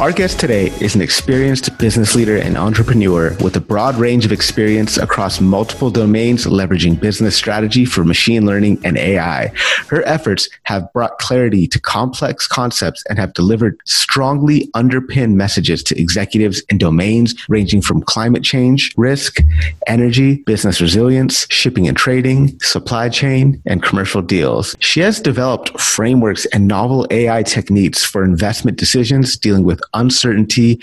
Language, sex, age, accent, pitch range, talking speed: English, male, 30-49, American, 95-125 Hz, 145 wpm